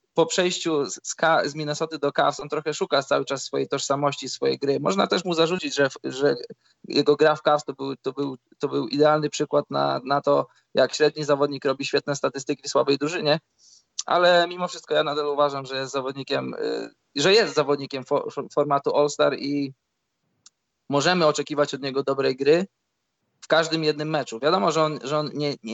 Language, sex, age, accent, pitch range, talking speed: Polish, male, 20-39, native, 135-155 Hz, 180 wpm